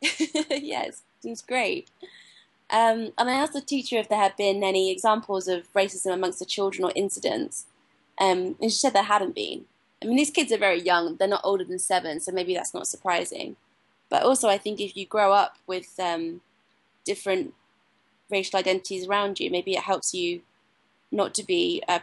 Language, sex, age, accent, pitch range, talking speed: English, female, 20-39, British, 185-215 Hz, 190 wpm